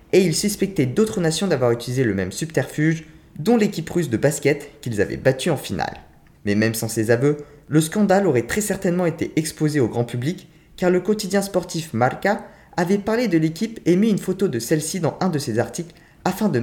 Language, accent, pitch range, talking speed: French, French, 120-175 Hz, 205 wpm